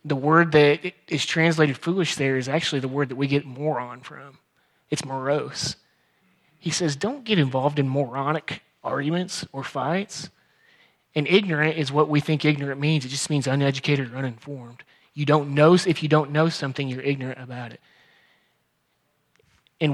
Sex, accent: male, American